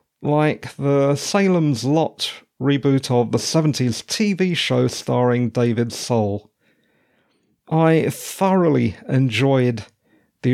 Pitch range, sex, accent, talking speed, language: 120-155 Hz, male, British, 95 wpm, English